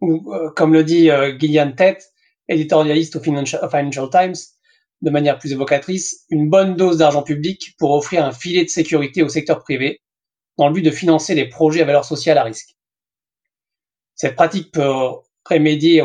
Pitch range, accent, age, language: 145-165 Hz, French, 30-49, English